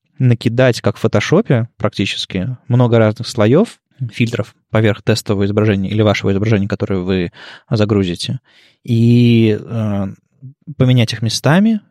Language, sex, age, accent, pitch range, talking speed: Russian, male, 20-39, native, 105-130 Hz, 115 wpm